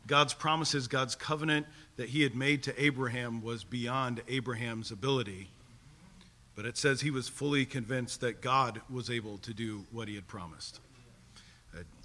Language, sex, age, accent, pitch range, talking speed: English, male, 50-69, American, 115-145 Hz, 160 wpm